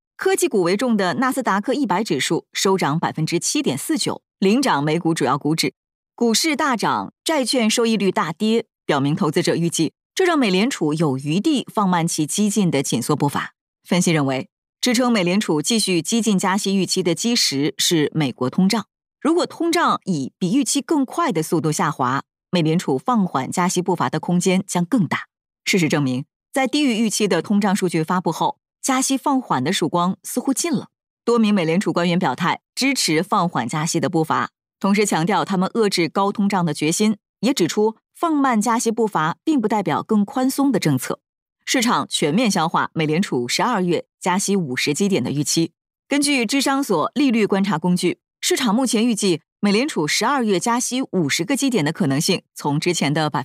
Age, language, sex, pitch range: 30-49, Chinese, female, 165-235 Hz